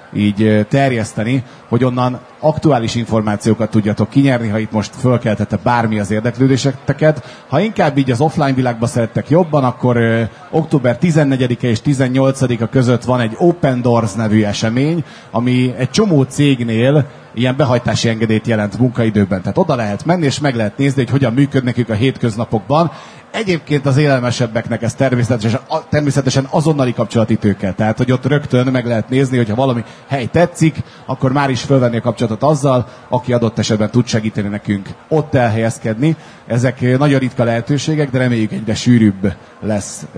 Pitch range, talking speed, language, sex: 110-140 Hz, 155 wpm, Hungarian, male